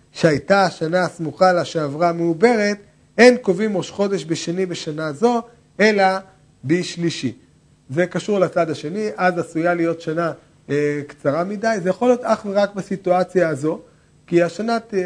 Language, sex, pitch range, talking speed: Hebrew, male, 155-195 Hz, 140 wpm